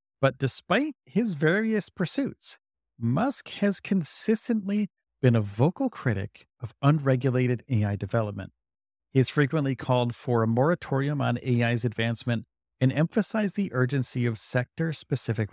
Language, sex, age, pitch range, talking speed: English, male, 40-59, 115-150 Hz, 125 wpm